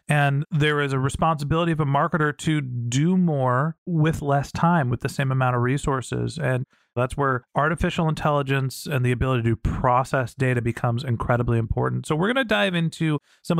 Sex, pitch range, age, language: male, 130-170 Hz, 40-59, English